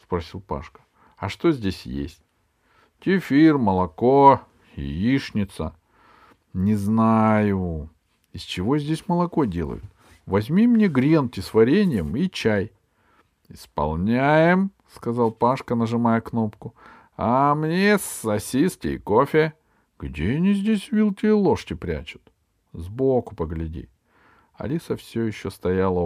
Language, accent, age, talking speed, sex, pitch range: Russian, native, 50-69, 130 wpm, male, 90-145 Hz